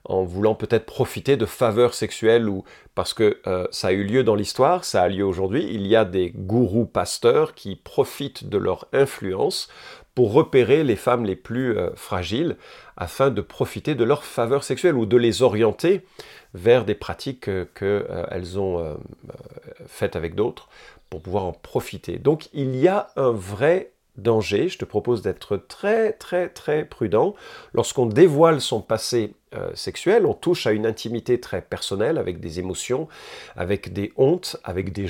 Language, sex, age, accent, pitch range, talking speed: French, male, 40-59, French, 105-155 Hz, 175 wpm